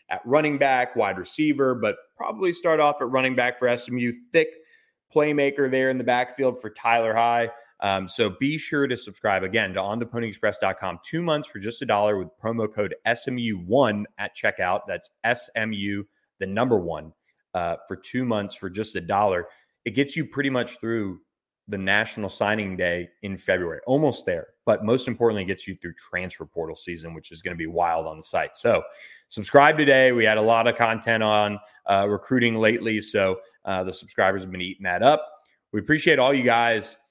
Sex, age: male, 30-49